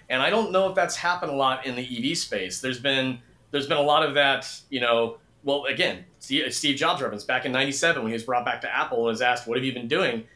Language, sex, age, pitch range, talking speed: English, male, 30-49, 130-160 Hz, 265 wpm